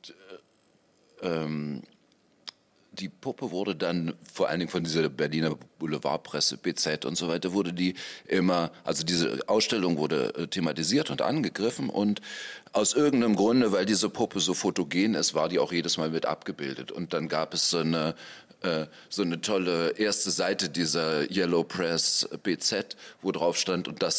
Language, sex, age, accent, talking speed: German, male, 40-59, German, 155 wpm